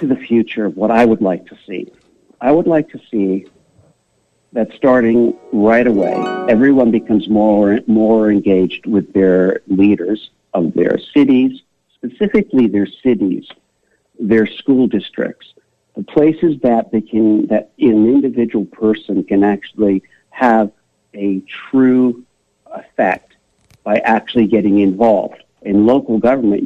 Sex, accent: male, American